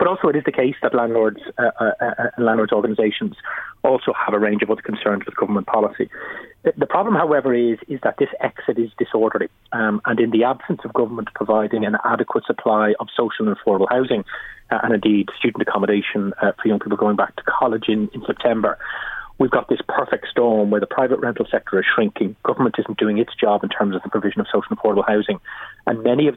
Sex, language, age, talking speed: male, English, 30-49, 220 wpm